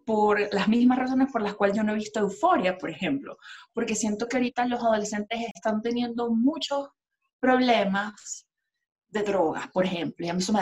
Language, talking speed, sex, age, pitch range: Spanish, 185 wpm, female, 20-39, 210-275 Hz